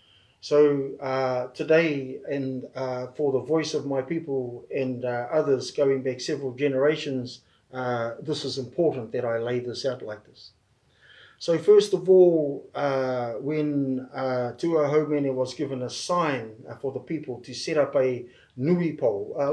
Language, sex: English, male